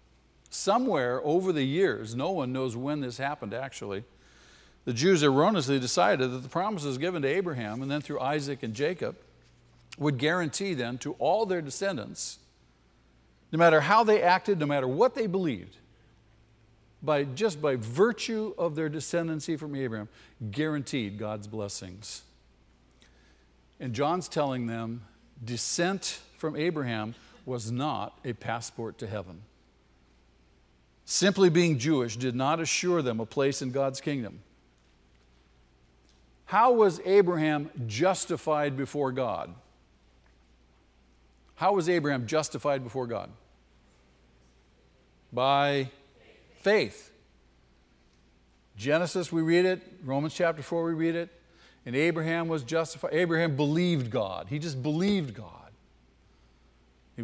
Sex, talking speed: male, 125 wpm